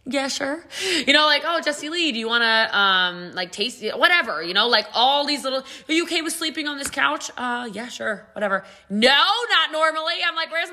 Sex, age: female, 20-39